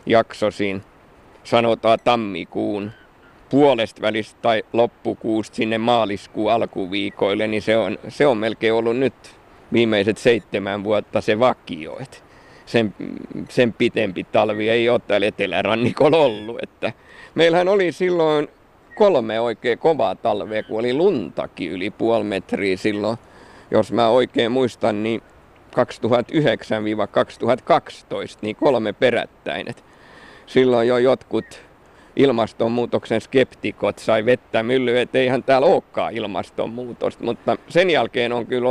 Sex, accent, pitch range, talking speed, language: male, native, 105-120 Hz, 110 wpm, Finnish